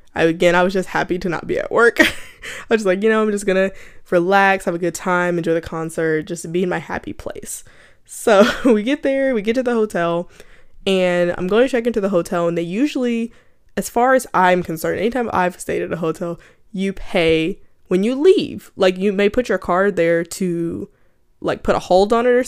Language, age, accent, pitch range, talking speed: English, 10-29, American, 170-230 Hz, 220 wpm